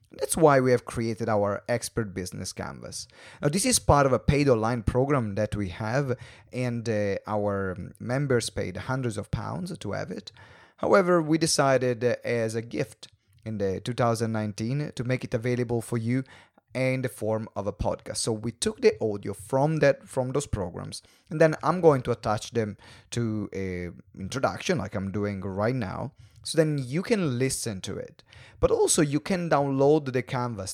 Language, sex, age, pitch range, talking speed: English, male, 30-49, 105-140 Hz, 175 wpm